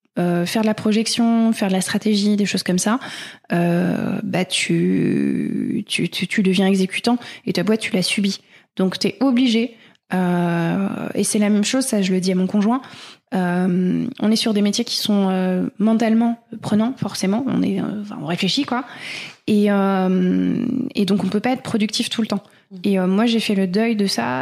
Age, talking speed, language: 20-39, 200 wpm, French